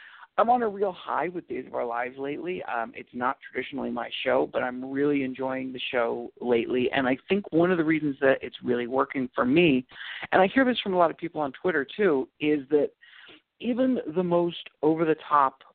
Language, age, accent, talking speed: English, 50-69, American, 215 wpm